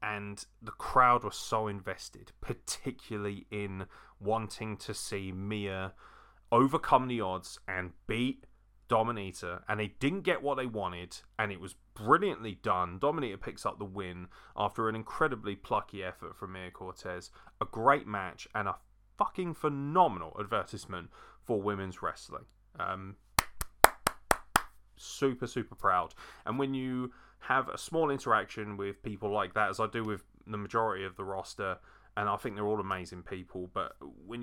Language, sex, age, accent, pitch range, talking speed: English, male, 30-49, British, 95-120 Hz, 150 wpm